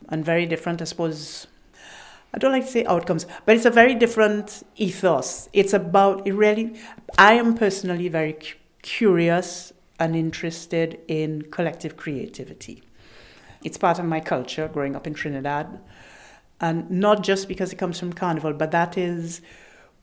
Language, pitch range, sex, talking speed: English, 145-175 Hz, female, 155 wpm